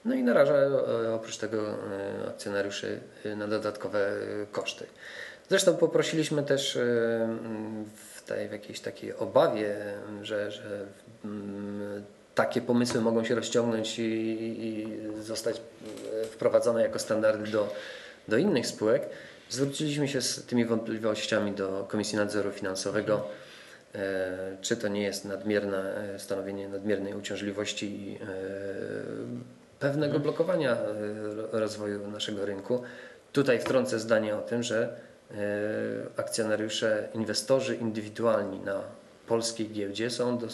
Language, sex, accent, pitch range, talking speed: Polish, male, native, 100-115 Hz, 105 wpm